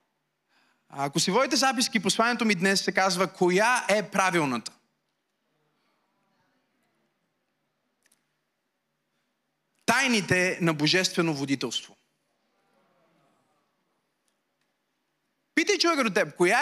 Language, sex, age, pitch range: Bulgarian, male, 30-49, 195-250 Hz